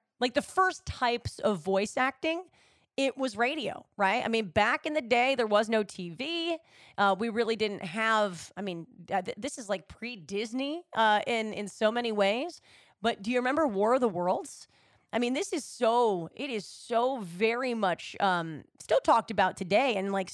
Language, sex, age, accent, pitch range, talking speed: English, female, 30-49, American, 200-260 Hz, 190 wpm